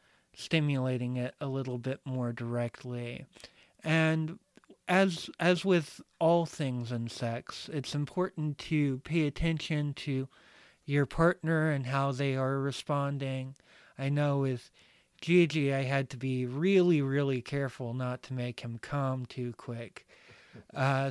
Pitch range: 125-155 Hz